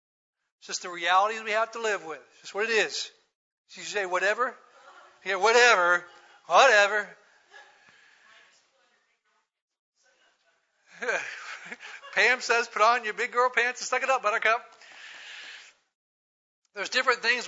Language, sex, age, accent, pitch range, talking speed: English, male, 60-79, American, 185-290 Hz, 125 wpm